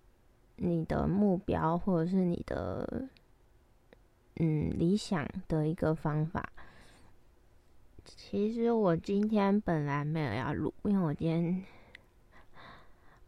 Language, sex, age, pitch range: Chinese, female, 20-39, 165-215 Hz